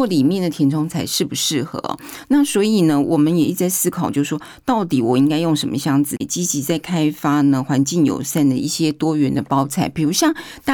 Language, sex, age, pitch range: Chinese, female, 50-69, 145-200 Hz